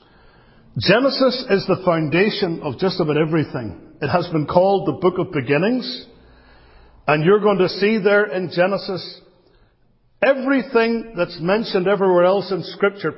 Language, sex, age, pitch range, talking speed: English, male, 50-69, 145-200 Hz, 140 wpm